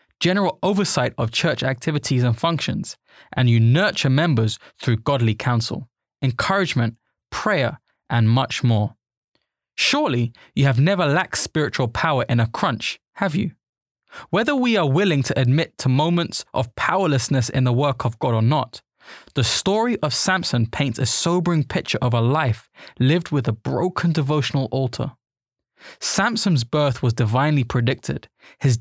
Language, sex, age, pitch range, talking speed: English, male, 20-39, 120-165 Hz, 150 wpm